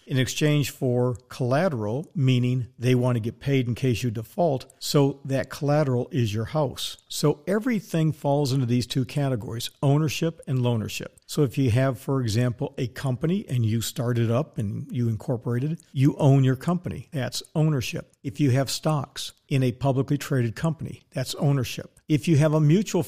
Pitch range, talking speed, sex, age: 125-155 Hz, 175 wpm, male, 50-69